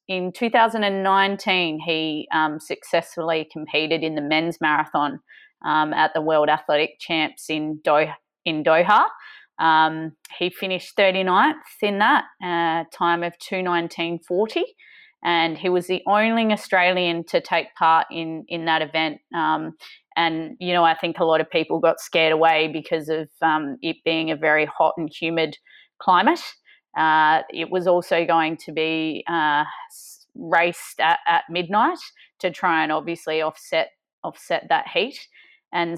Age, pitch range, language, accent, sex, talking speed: 30-49, 160-180 Hz, English, Australian, female, 145 wpm